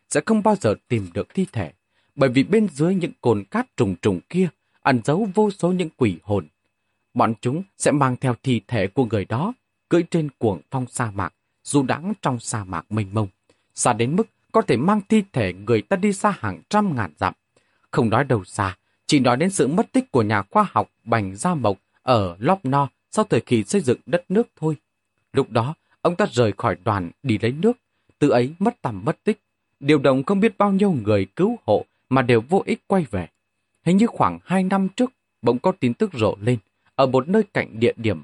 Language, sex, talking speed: Vietnamese, male, 220 wpm